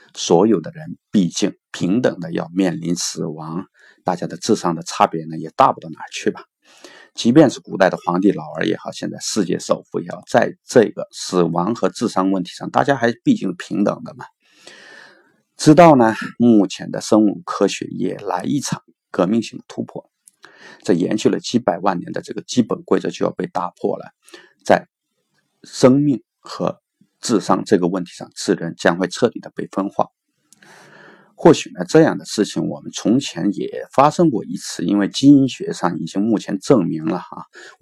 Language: Chinese